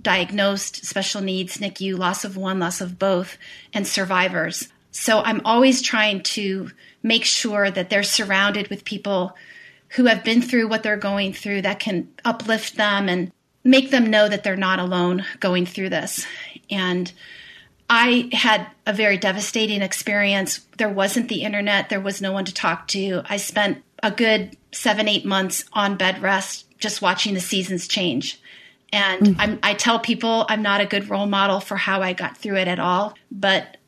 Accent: American